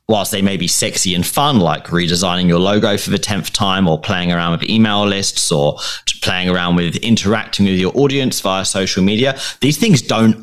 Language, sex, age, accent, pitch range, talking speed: English, male, 30-49, British, 95-125 Hz, 200 wpm